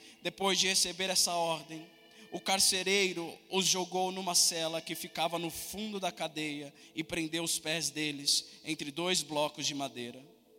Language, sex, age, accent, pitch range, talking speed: Portuguese, male, 20-39, Brazilian, 165-200 Hz, 155 wpm